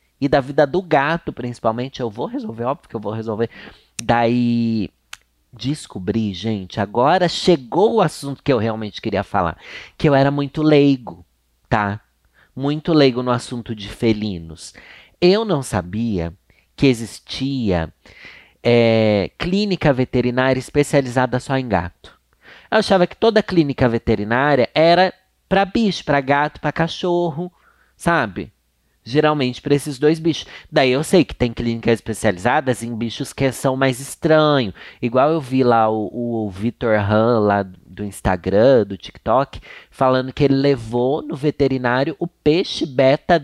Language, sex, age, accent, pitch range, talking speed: Portuguese, male, 30-49, Brazilian, 115-150 Hz, 145 wpm